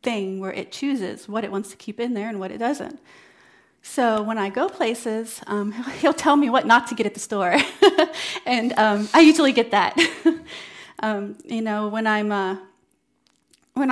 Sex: female